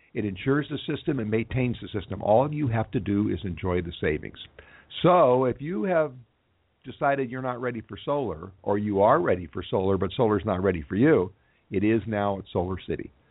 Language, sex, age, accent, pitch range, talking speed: English, male, 50-69, American, 100-125 Hz, 200 wpm